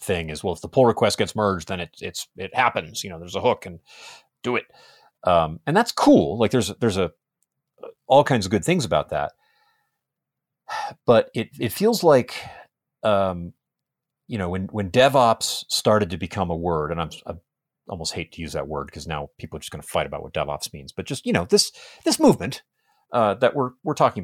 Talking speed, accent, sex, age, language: 210 wpm, American, male, 30-49, English